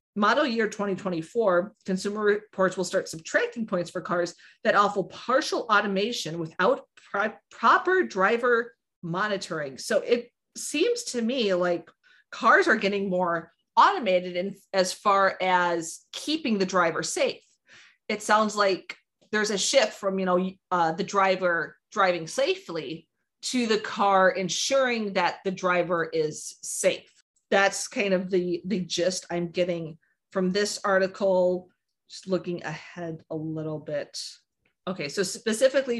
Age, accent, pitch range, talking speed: 30-49, American, 175-215 Hz, 135 wpm